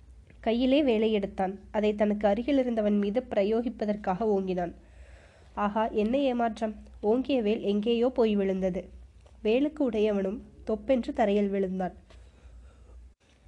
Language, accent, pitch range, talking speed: Tamil, native, 195-235 Hz, 100 wpm